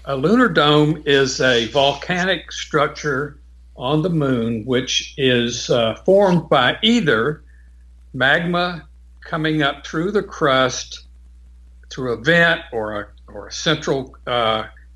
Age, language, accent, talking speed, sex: 60-79, English, American, 125 wpm, male